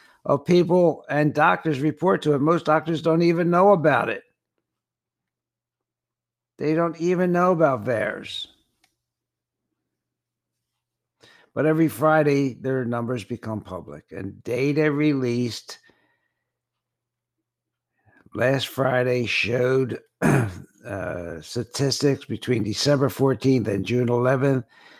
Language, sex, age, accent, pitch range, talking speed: English, male, 60-79, American, 120-145 Hz, 100 wpm